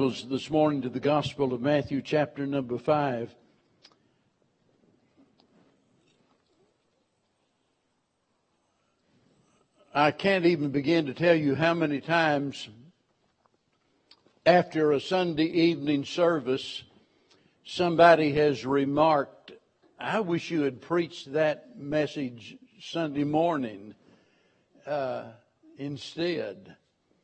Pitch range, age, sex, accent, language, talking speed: 145-165 Hz, 60-79, male, American, English, 85 wpm